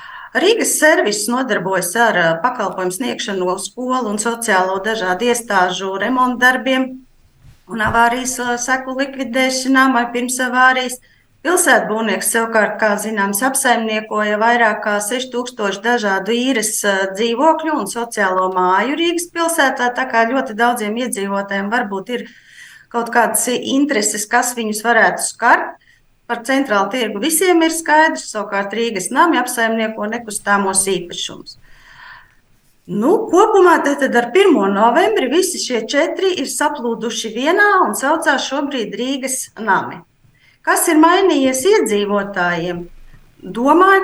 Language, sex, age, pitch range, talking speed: Russian, female, 30-49, 215-280 Hz, 110 wpm